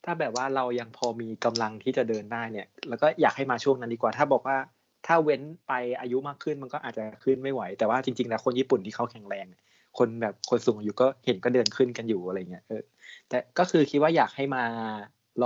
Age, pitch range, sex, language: 20-39, 115-150 Hz, male, Thai